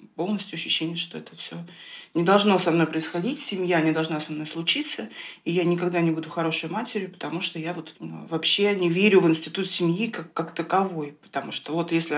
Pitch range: 170-215 Hz